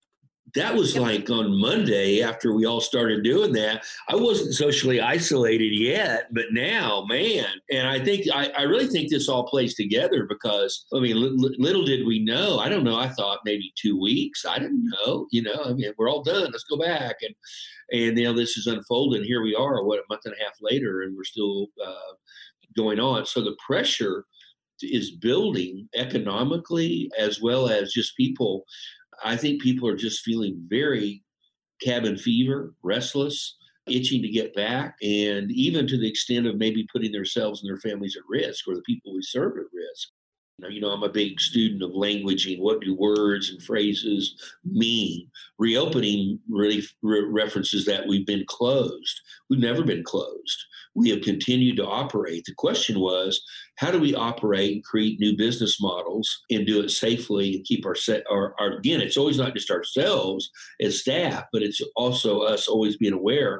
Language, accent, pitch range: English, American, 100-130 Hz